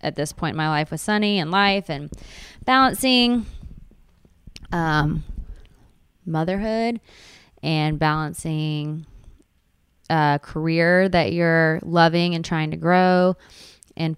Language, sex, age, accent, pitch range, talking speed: English, female, 20-39, American, 155-195 Hz, 110 wpm